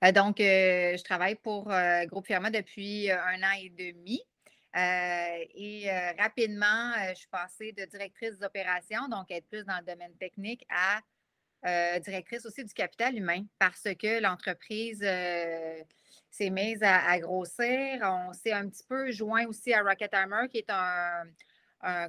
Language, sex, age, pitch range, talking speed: French, female, 30-49, 180-215 Hz, 170 wpm